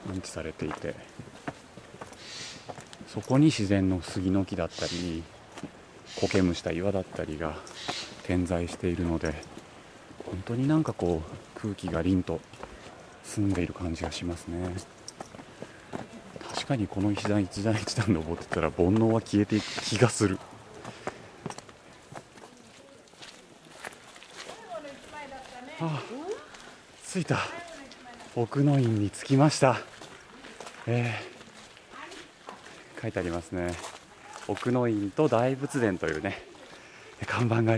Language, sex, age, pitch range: Japanese, male, 40-59, 90-130 Hz